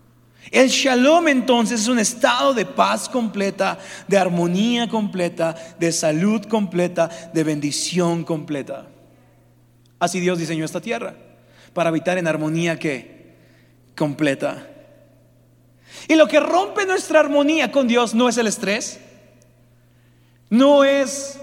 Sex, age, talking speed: male, 40-59, 120 wpm